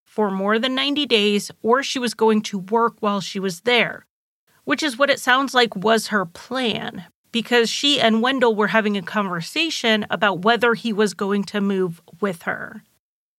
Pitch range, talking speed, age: 205-240 Hz, 185 wpm, 30-49